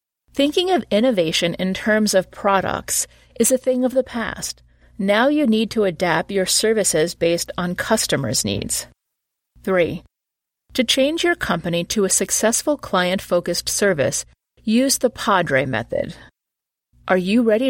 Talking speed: 140 wpm